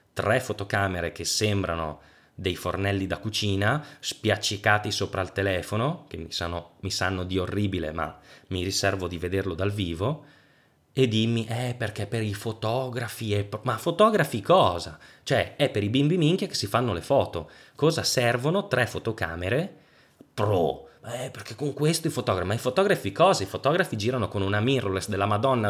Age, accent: 20-39, native